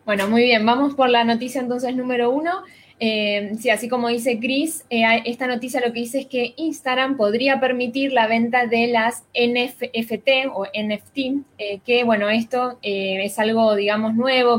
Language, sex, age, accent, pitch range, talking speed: Spanish, female, 10-29, Argentinian, 210-260 Hz, 175 wpm